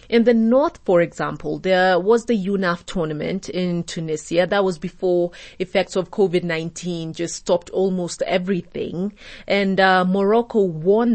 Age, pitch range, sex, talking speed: 30-49, 175-230 Hz, female, 140 wpm